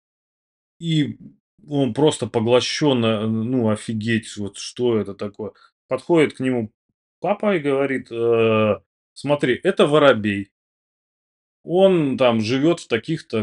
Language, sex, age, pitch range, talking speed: Russian, male, 30-49, 110-150 Hz, 105 wpm